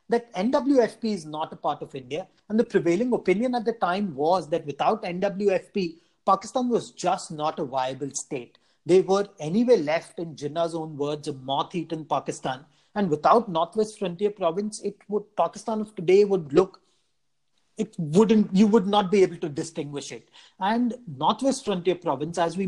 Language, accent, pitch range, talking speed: English, Indian, 160-215 Hz, 175 wpm